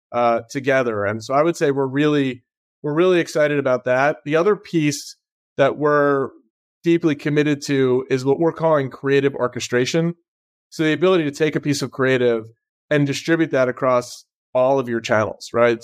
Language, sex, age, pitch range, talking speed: English, male, 30-49, 125-150 Hz, 175 wpm